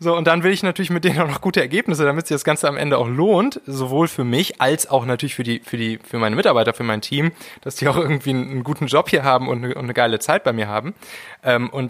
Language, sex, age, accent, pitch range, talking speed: German, male, 20-39, German, 120-155 Hz, 265 wpm